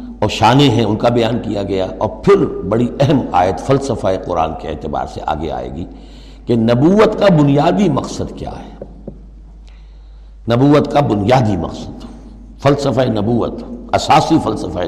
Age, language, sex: 60-79, Urdu, male